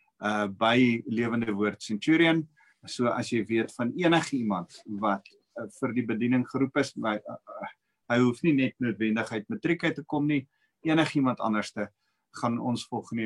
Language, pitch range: English, 105-140 Hz